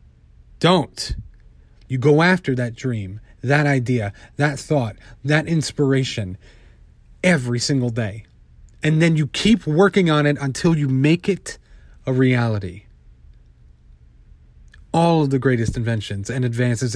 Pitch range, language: 105-155 Hz, English